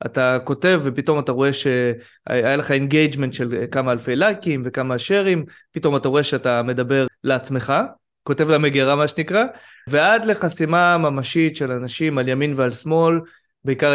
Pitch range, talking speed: 130-165 Hz, 145 wpm